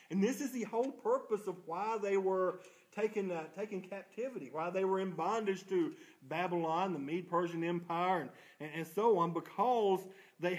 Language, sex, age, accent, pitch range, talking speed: English, male, 40-59, American, 160-195 Hz, 170 wpm